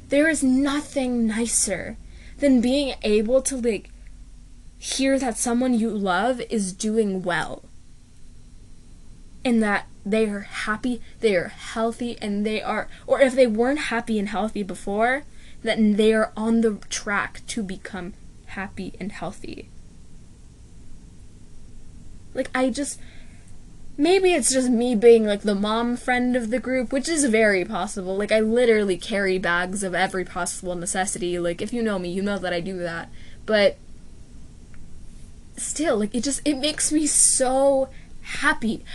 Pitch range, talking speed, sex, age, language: 195-265 Hz, 150 wpm, female, 10-29, English